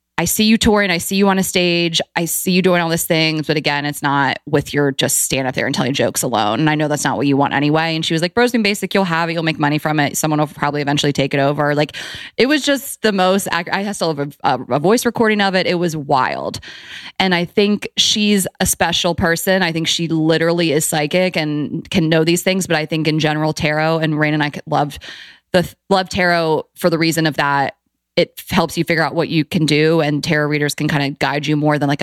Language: English